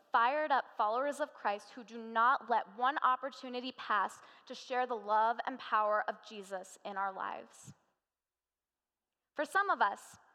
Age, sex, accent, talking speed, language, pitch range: 10-29, female, American, 155 wpm, English, 210-270 Hz